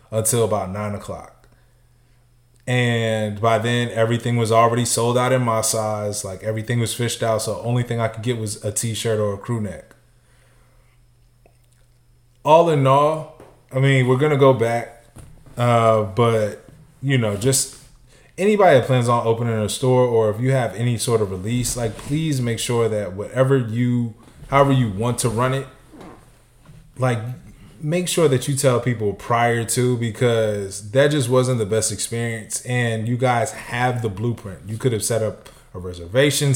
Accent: American